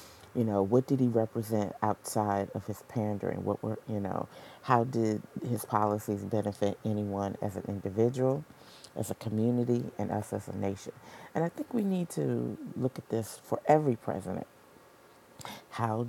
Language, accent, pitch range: English, American, 105-130 Hz